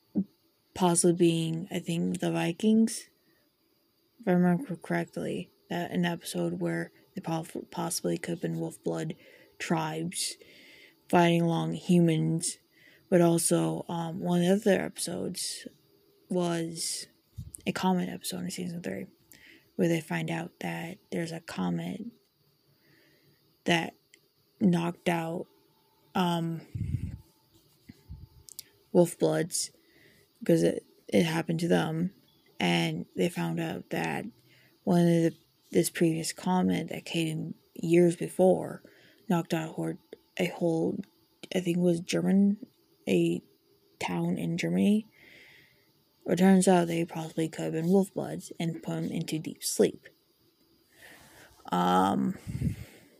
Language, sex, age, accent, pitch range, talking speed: English, female, 20-39, American, 165-185 Hz, 115 wpm